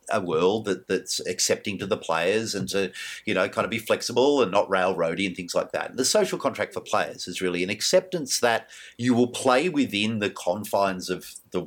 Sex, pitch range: male, 90-140 Hz